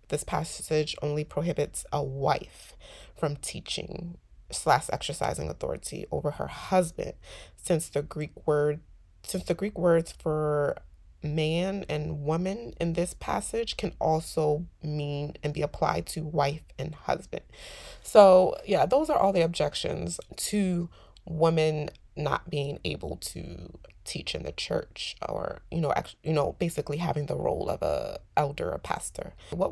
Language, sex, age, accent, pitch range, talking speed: English, female, 30-49, American, 145-175 Hz, 145 wpm